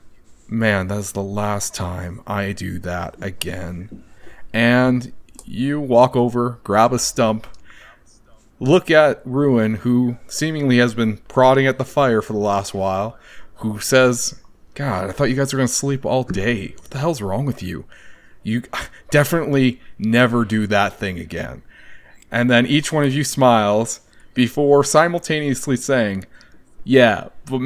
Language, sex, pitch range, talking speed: English, male, 110-140 Hz, 150 wpm